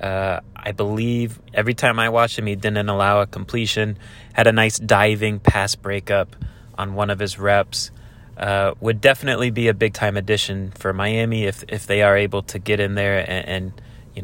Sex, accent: male, American